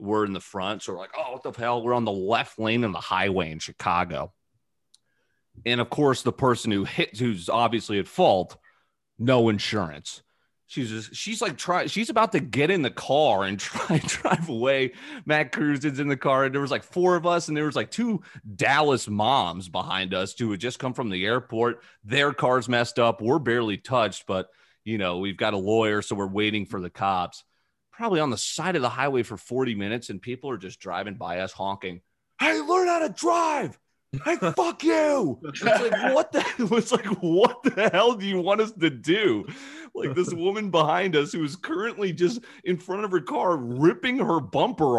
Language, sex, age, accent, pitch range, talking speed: English, male, 30-49, American, 110-180 Hz, 205 wpm